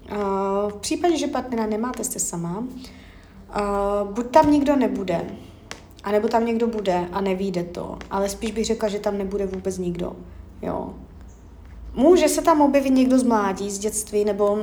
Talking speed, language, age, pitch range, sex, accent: 155 wpm, Czech, 30-49, 195-240 Hz, female, native